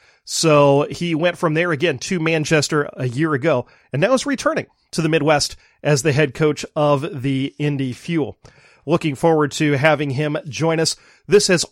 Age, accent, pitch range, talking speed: 30-49, American, 145-180 Hz, 180 wpm